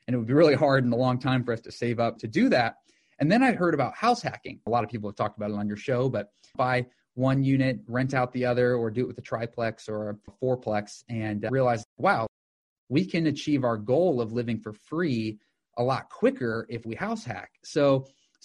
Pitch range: 115-140 Hz